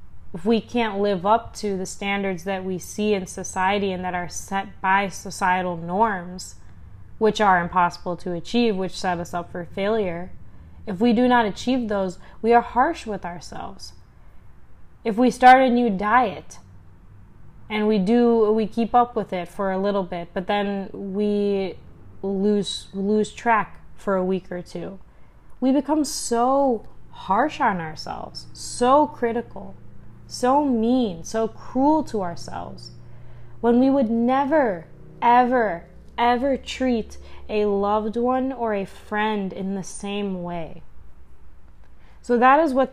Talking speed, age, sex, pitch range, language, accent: 150 wpm, 20-39, female, 175-235 Hz, English, American